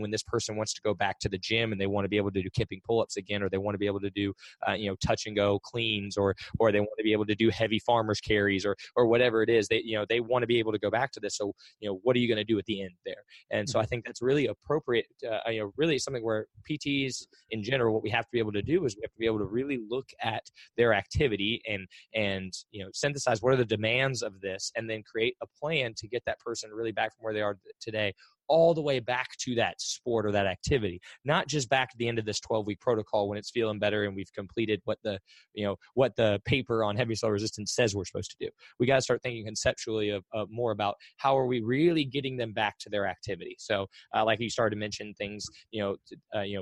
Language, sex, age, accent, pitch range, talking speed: English, male, 20-39, American, 100-115 Hz, 280 wpm